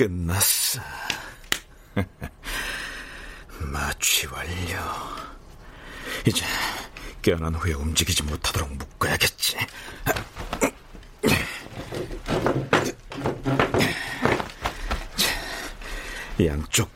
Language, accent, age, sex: Korean, native, 50-69, male